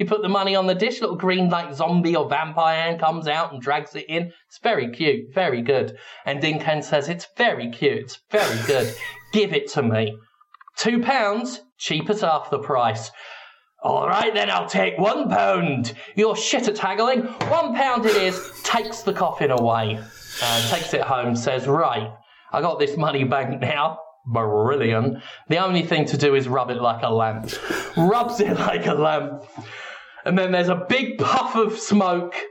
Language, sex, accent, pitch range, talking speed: English, male, British, 135-200 Hz, 190 wpm